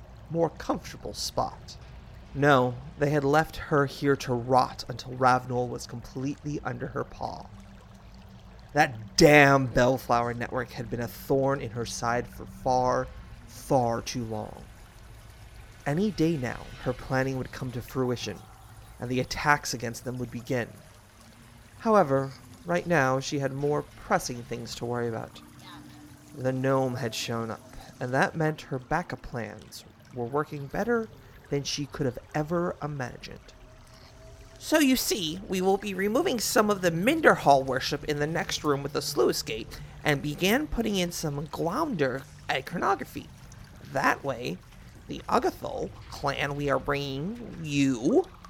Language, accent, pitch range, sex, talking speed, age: English, American, 120-150 Hz, male, 145 wpm, 30-49